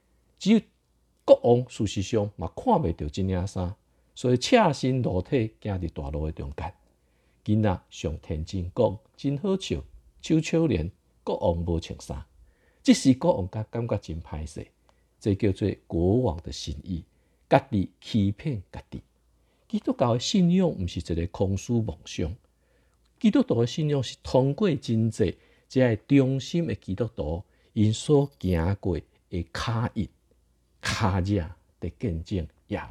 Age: 50-69